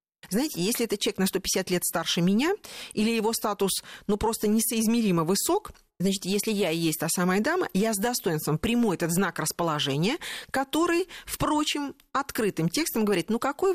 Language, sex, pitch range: Russian, female, 175-240 Hz